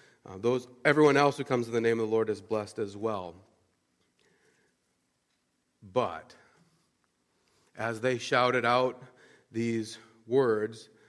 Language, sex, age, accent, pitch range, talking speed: English, male, 40-59, American, 110-145 Hz, 125 wpm